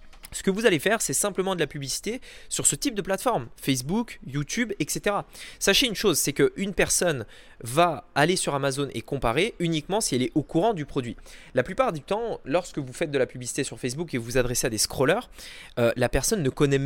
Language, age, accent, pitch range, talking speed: French, 20-39, French, 130-175 Hz, 220 wpm